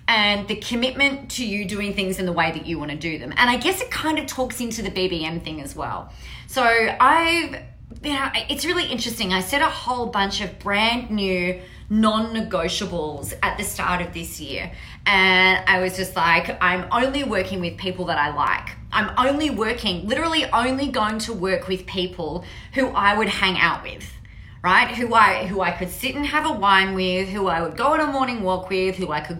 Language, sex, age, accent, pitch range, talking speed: English, female, 30-49, Australian, 180-240 Hz, 210 wpm